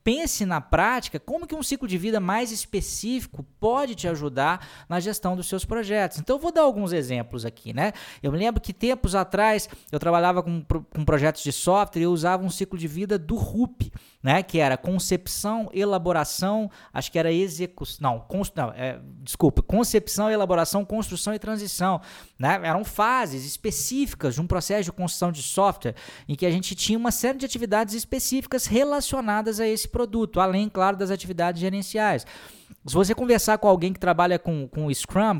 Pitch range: 170-215 Hz